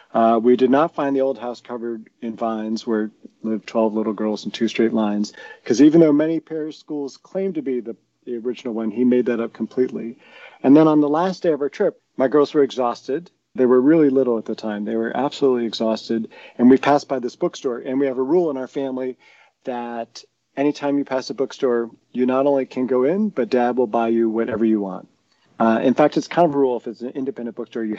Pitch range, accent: 115-135 Hz, American